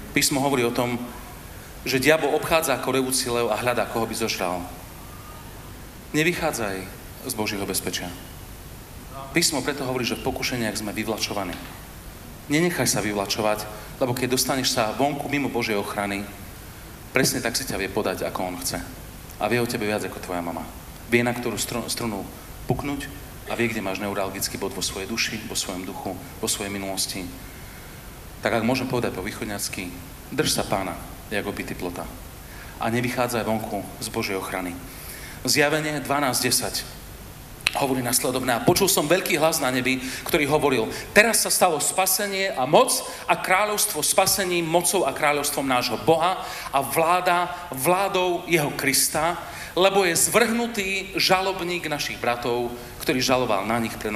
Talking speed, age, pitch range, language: 150 wpm, 40-59, 105-145 Hz, Slovak